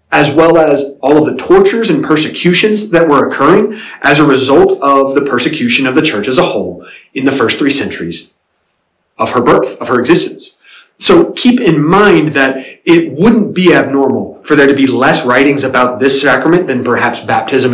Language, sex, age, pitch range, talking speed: English, male, 30-49, 125-205 Hz, 190 wpm